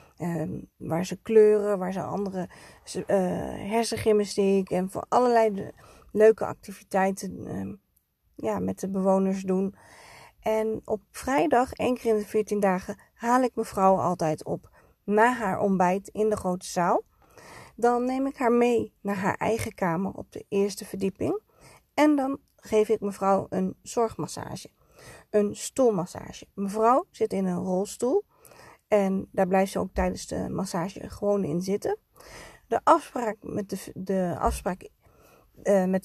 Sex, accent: female, Dutch